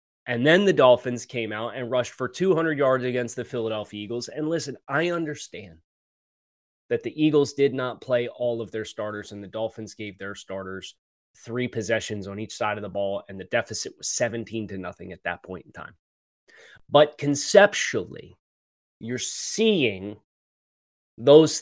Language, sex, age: English, male, 20-39